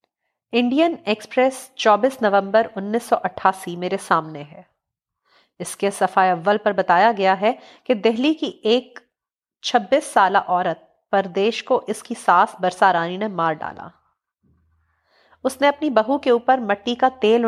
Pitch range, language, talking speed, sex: 185-235 Hz, Urdu, 140 wpm, female